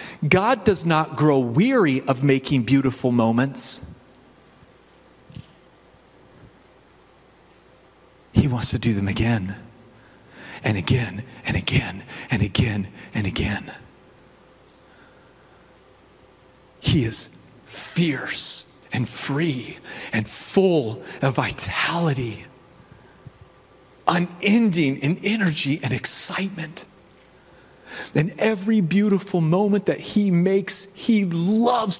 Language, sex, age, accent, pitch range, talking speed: English, male, 40-59, American, 120-180 Hz, 85 wpm